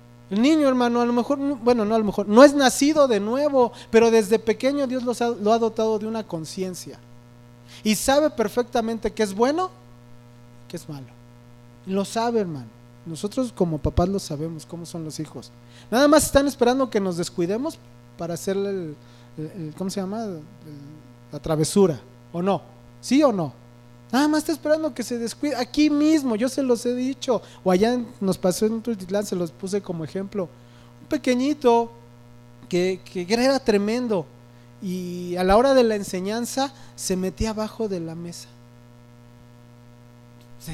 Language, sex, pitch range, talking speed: English, male, 145-230 Hz, 170 wpm